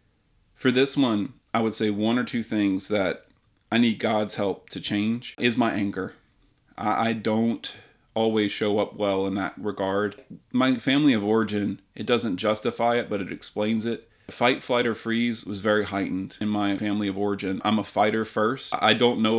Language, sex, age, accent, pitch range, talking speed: English, male, 30-49, American, 100-115 Hz, 185 wpm